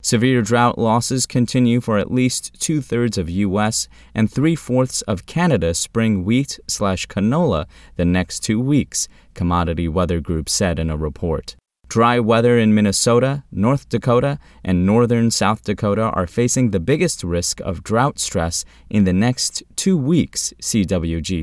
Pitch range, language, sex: 90-120 Hz, English, male